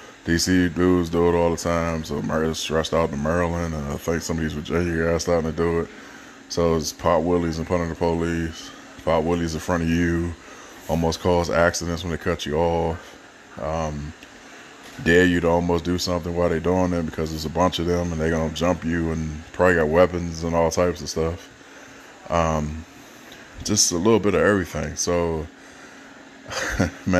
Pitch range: 80-90 Hz